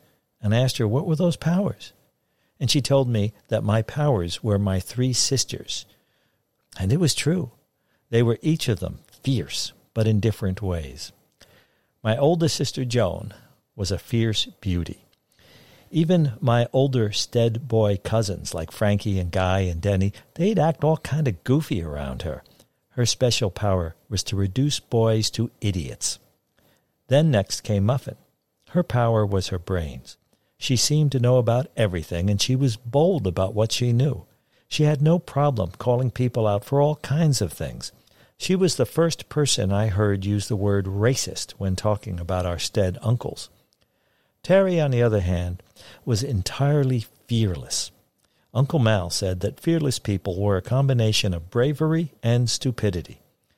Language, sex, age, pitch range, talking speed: English, male, 60-79, 100-135 Hz, 160 wpm